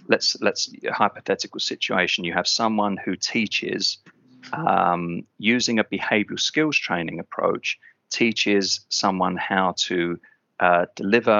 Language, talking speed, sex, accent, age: English, 115 wpm, male, British, 30-49